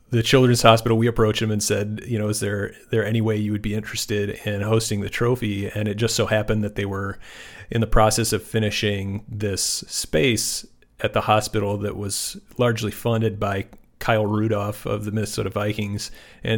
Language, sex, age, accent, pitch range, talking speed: English, male, 40-59, American, 105-115 Hz, 190 wpm